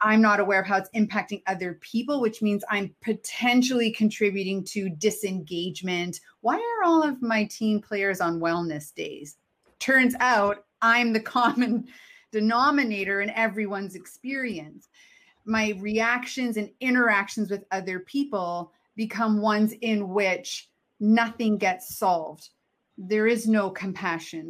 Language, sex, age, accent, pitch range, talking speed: English, female, 30-49, American, 190-230 Hz, 130 wpm